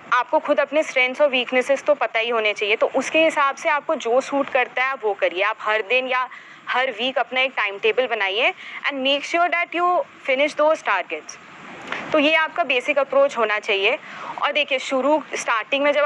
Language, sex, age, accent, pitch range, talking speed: Hindi, female, 20-39, native, 220-285 Hz, 200 wpm